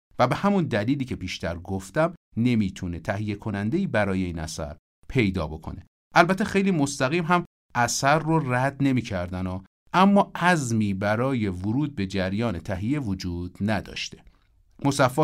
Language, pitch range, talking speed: Persian, 90-130 Hz, 135 wpm